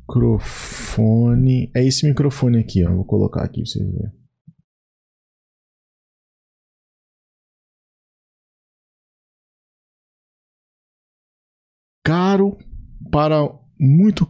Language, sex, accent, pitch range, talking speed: Portuguese, male, Brazilian, 115-160 Hz, 65 wpm